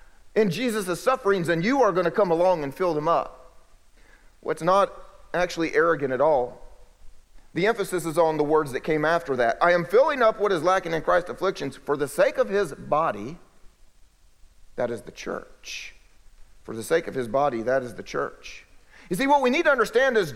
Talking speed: 205 wpm